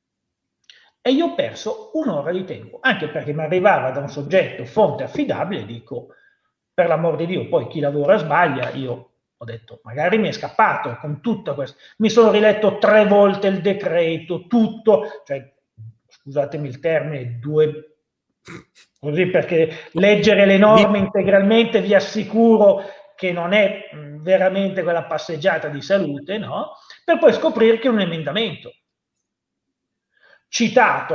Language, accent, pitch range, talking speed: Italian, native, 160-225 Hz, 140 wpm